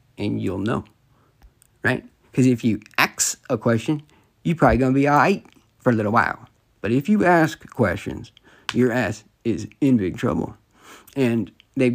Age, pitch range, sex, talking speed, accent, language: 50-69, 110-160 Hz, male, 170 wpm, American, English